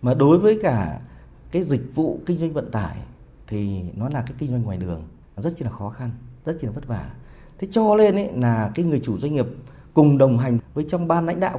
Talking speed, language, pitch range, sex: 245 wpm, Vietnamese, 115-160 Hz, male